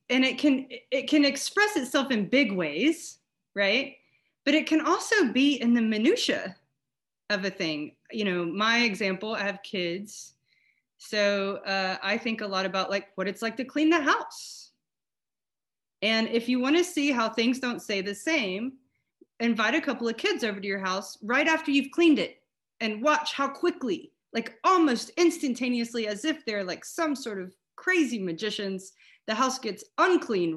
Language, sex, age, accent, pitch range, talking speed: English, female, 30-49, American, 215-315 Hz, 175 wpm